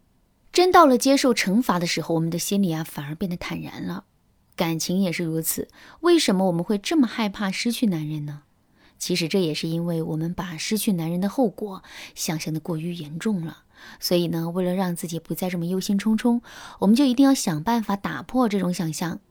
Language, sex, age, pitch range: Chinese, female, 20-39, 170-240 Hz